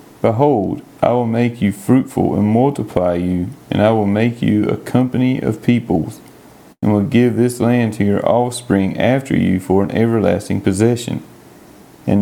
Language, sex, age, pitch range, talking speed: English, male, 30-49, 100-120 Hz, 160 wpm